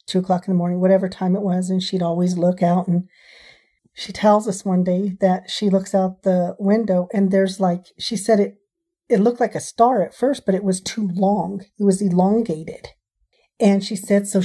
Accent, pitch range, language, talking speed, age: American, 190-220 Hz, English, 210 wpm, 40-59